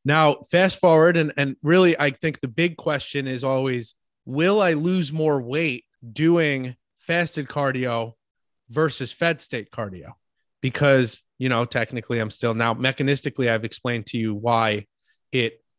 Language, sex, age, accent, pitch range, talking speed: English, male, 30-49, American, 130-160 Hz, 150 wpm